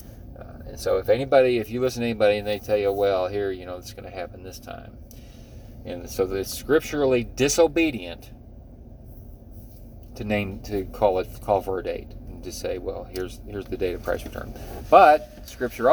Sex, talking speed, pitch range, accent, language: male, 190 wpm, 95-110 Hz, American, English